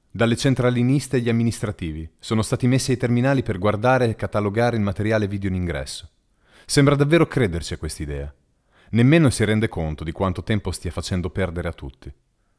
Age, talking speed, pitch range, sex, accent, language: 30-49, 170 wpm, 85-120 Hz, male, native, Italian